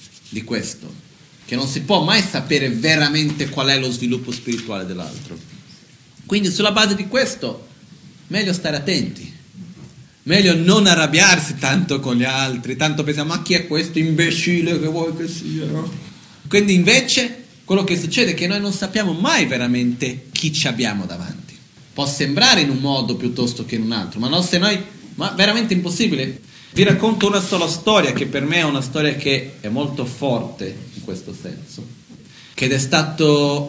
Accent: native